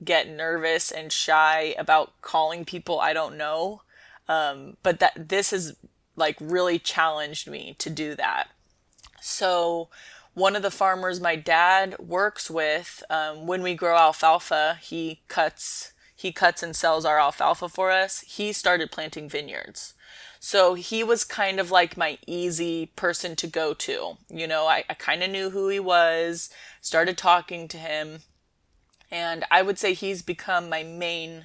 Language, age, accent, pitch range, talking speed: English, 20-39, American, 160-190 Hz, 160 wpm